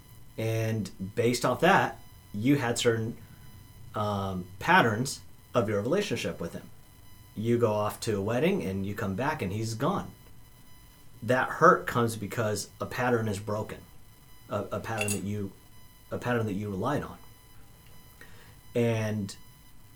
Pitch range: 100-125 Hz